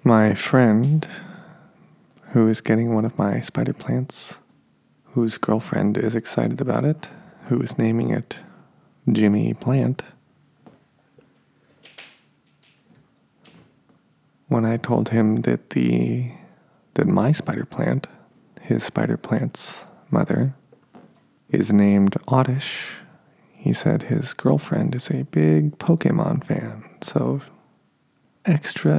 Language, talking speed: English, 105 wpm